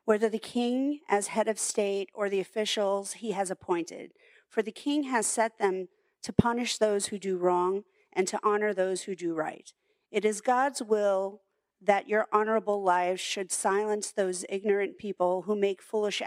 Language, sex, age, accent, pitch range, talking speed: English, female, 40-59, American, 185-225 Hz, 175 wpm